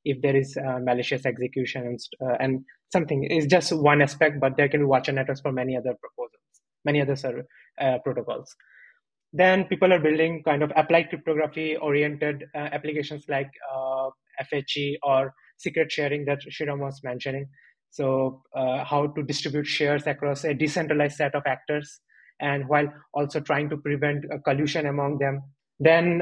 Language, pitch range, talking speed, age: English, 140-155 Hz, 165 wpm, 20-39